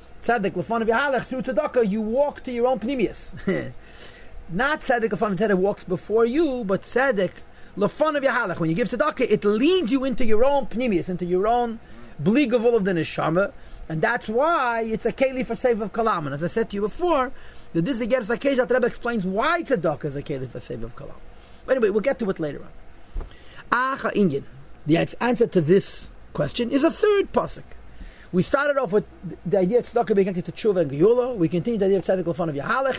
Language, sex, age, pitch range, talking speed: English, male, 40-59, 175-250 Hz, 200 wpm